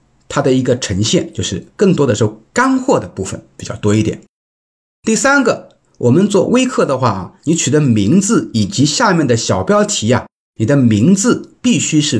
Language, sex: Chinese, male